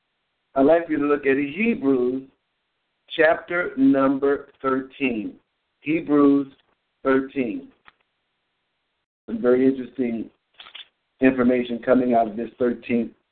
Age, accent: 60-79, American